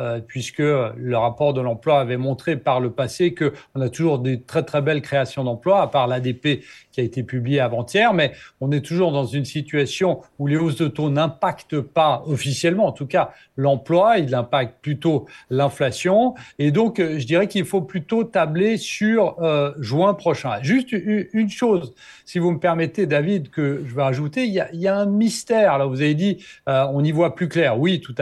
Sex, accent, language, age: male, French, French, 40-59